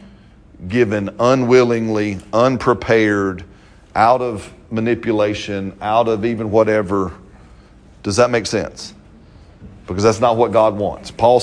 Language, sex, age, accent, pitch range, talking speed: English, male, 40-59, American, 100-130 Hz, 110 wpm